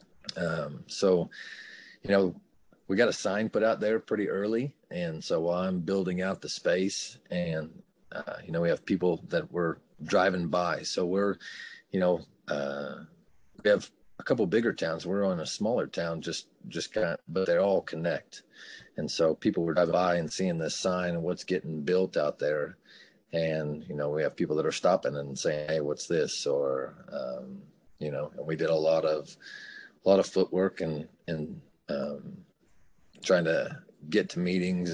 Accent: American